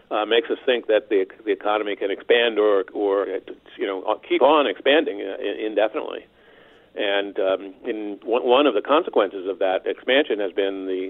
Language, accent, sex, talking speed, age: English, American, male, 185 wpm, 50-69